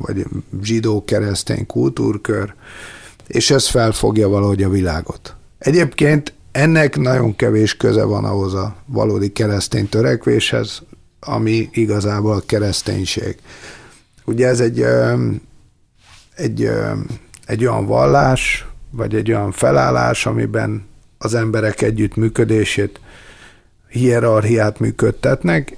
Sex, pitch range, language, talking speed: male, 105-130 Hz, Hungarian, 100 wpm